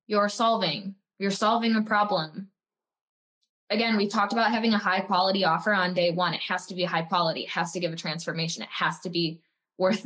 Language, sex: English, female